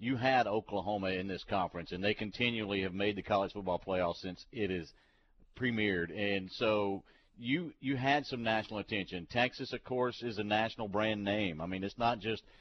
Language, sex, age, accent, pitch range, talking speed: English, male, 50-69, American, 105-130 Hz, 190 wpm